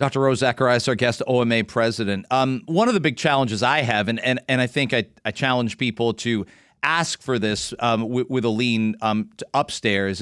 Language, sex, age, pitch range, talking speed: English, male, 40-59, 115-145 Hz, 210 wpm